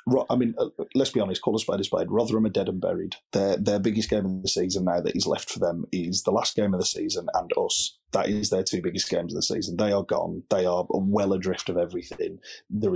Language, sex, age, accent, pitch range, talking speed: English, male, 30-49, British, 90-100 Hz, 260 wpm